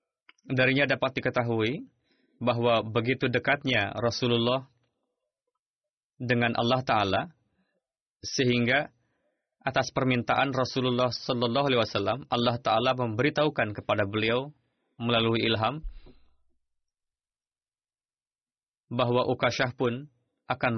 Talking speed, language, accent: 80 wpm, Indonesian, native